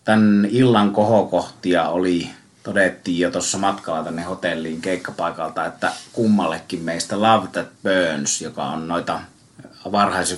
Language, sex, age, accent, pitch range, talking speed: Finnish, male, 30-49, native, 85-100 Hz, 120 wpm